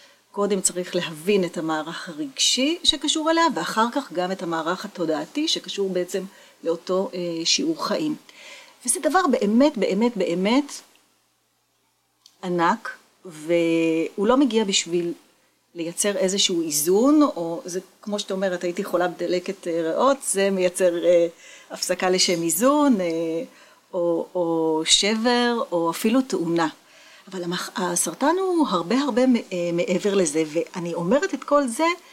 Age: 40-59